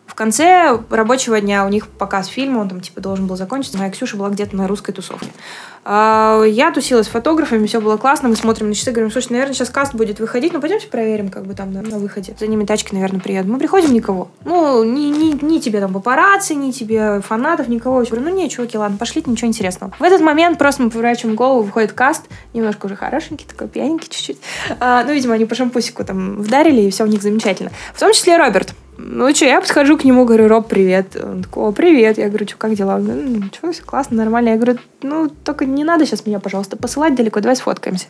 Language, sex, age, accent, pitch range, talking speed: Russian, female, 20-39, native, 205-275 Hz, 230 wpm